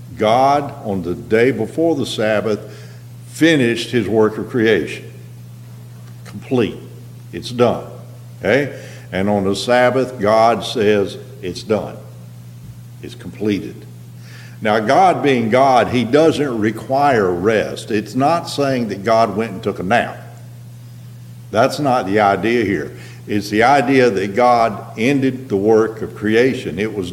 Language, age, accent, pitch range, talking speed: English, 60-79, American, 100-125 Hz, 135 wpm